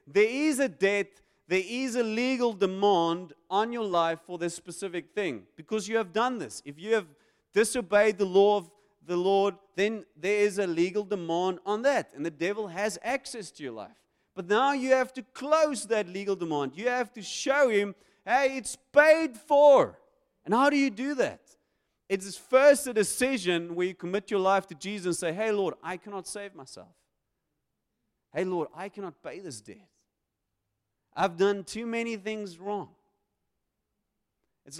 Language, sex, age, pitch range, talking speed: English, male, 30-49, 150-210 Hz, 180 wpm